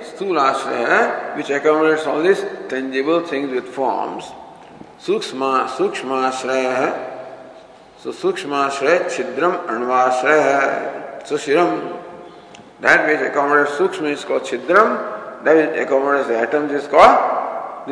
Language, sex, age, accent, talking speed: English, male, 50-69, Indian, 95 wpm